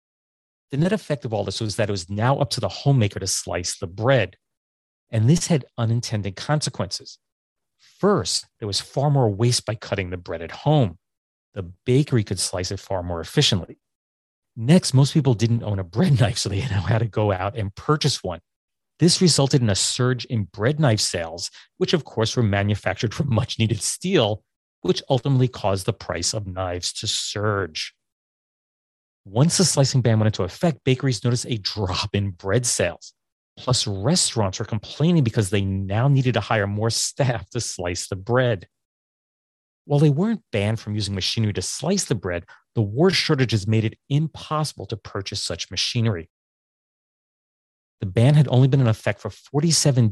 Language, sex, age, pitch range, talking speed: English, male, 30-49, 100-135 Hz, 175 wpm